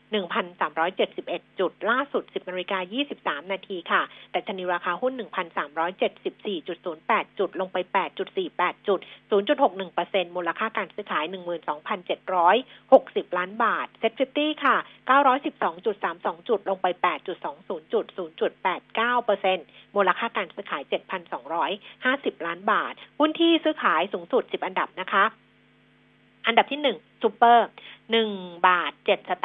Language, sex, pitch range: Thai, female, 185-250 Hz